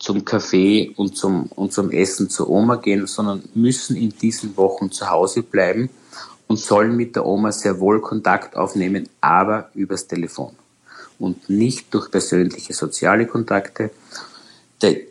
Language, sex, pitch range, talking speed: German, male, 95-115 Hz, 145 wpm